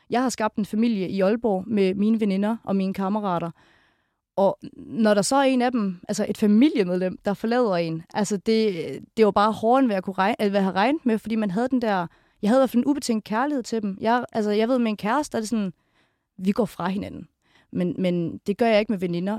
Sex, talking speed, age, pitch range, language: female, 230 wpm, 30-49, 190-230 Hz, Danish